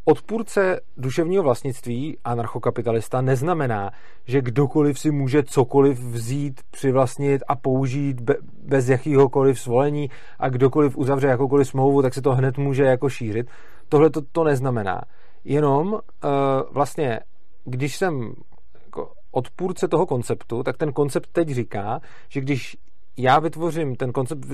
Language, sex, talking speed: Czech, male, 135 wpm